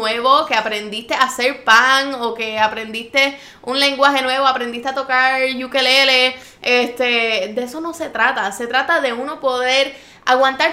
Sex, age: female, 10-29